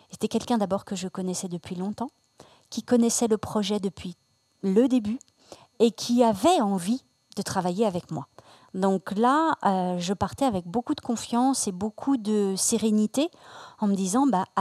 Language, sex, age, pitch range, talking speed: French, female, 40-59, 190-240 Hz, 165 wpm